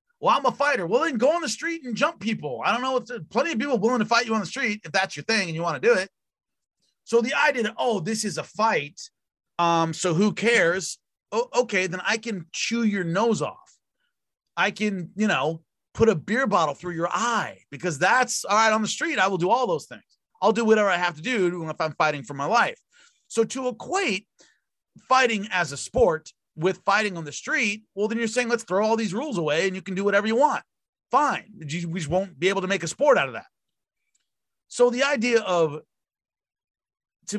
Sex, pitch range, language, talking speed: male, 165-230 Hz, English, 230 wpm